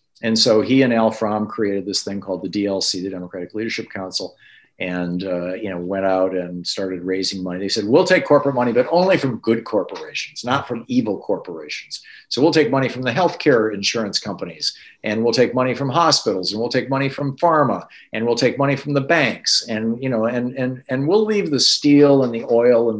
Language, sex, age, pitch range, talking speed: English, male, 50-69, 100-130 Hz, 215 wpm